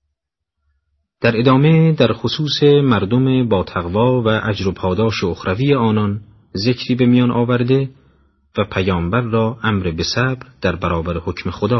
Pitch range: 85-120 Hz